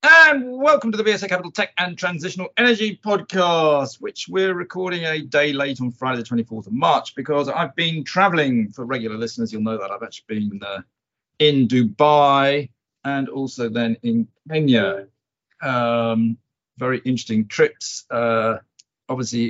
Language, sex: English, male